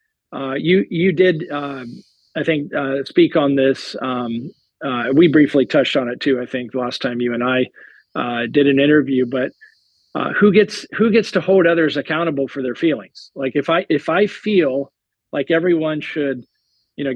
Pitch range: 135-165 Hz